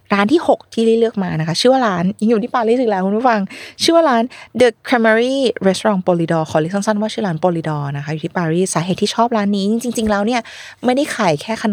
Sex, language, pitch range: female, Thai, 170-220 Hz